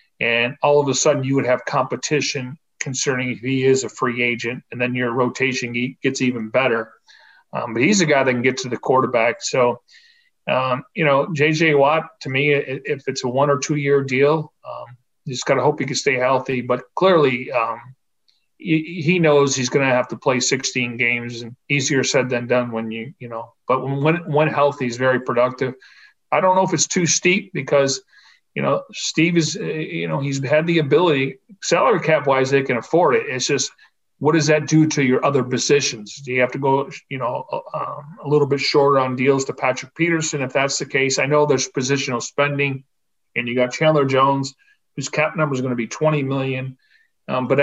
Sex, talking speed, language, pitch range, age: male, 210 wpm, English, 125-150 Hz, 40-59